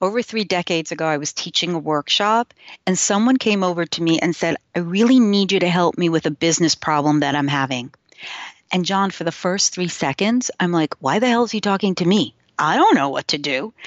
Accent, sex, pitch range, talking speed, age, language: American, female, 175-230 Hz, 235 wpm, 40-59, English